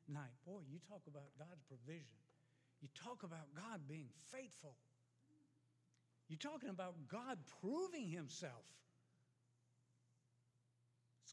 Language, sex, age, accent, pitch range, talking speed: English, male, 60-79, American, 125-185 Hz, 100 wpm